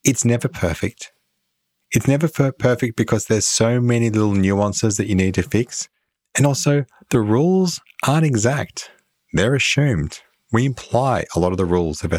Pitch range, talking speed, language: 85-125 Hz, 160 wpm, English